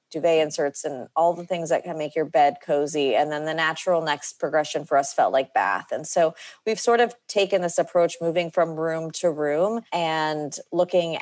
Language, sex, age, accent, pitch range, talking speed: English, female, 30-49, American, 145-170 Hz, 205 wpm